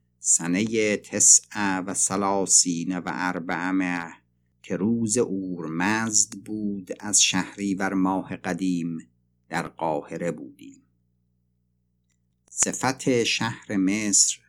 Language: Persian